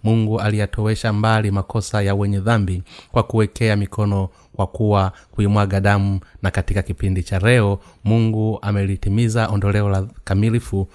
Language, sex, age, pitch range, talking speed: Swahili, male, 30-49, 95-110 Hz, 125 wpm